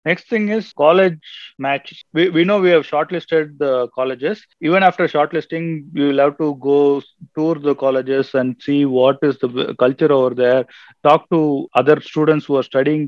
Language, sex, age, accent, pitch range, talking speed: Tamil, male, 30-49, native, 135-160 Hz, 180 wpm